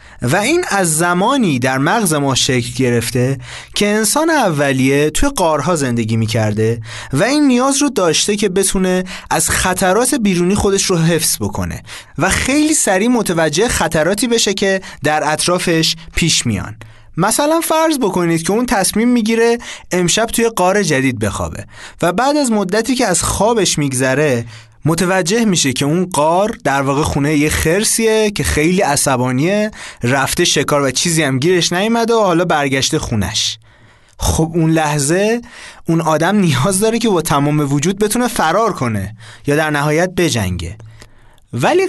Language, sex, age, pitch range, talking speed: Persian, male, 30-49, 135-205 Hz, 150 wpm